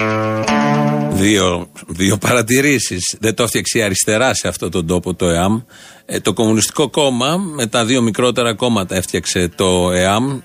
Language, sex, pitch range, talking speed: Greek, male, 110-170 Hz, 140 wpm